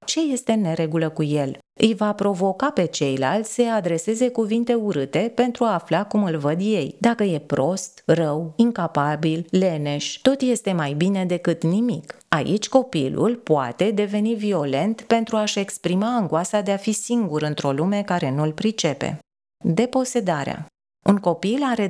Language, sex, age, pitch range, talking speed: Romanian, female, 30-49, 155-215 Hz, 150 wpm